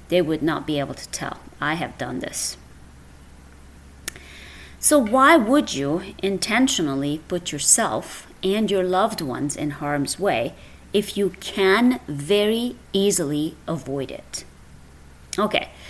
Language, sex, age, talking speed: English, female, 30-49, 125 wpm